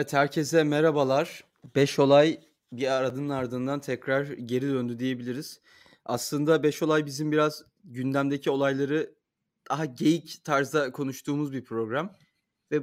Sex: male